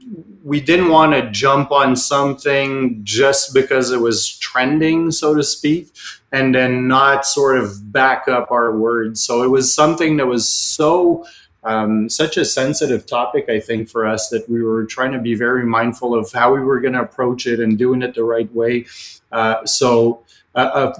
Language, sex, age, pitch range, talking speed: English, male, 30-49, 120-135 Hz, 185 wpm